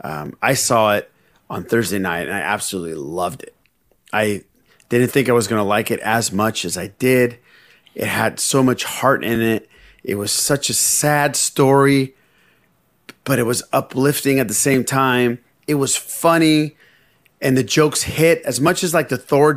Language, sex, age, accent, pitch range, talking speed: English, male, 30-49, American, 110-145 Hz, 185 wpm